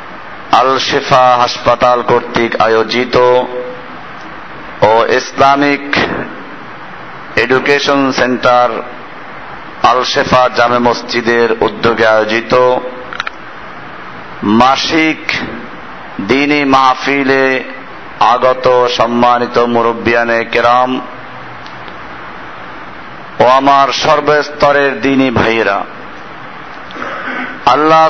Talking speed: 50 wpm